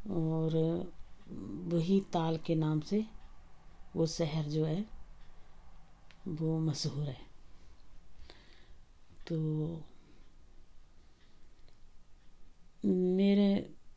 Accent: native